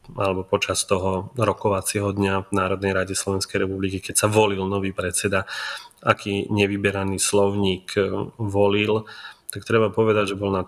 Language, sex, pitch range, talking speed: Slovak, male, 95-105 Hz, 140 wpm